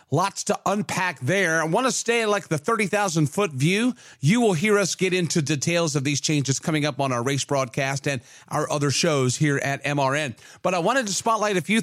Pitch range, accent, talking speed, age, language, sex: 140-185 Hz, American, 215 wpm, 40-59, English, male